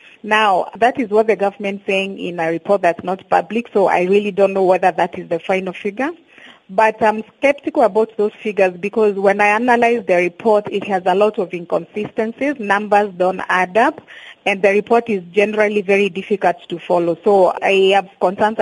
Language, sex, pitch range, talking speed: English, female, 185-215 Hz, 190 wpm